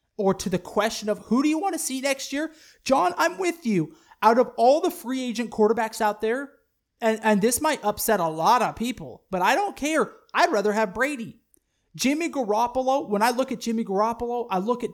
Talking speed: 215 wpm